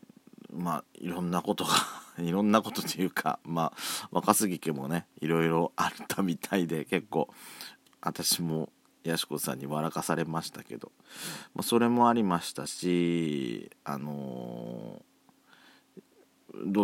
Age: 40-59